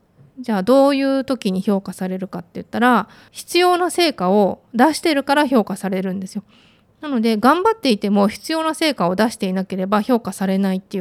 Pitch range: 195-265 Hz